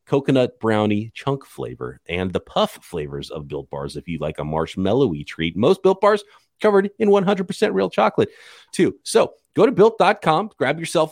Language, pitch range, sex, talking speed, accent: English, 115-165 Hz, male, 175 wpm, American